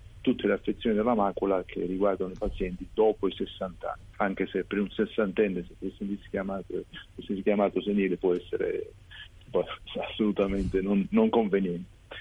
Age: 40-59